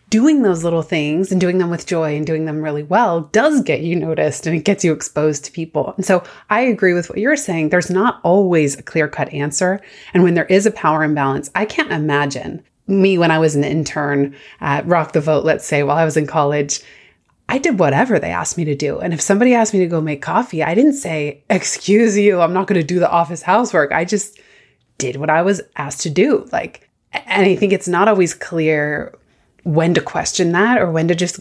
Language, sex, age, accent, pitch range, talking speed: English, female, 30-49, American, 160-200 Hz, 235 wpm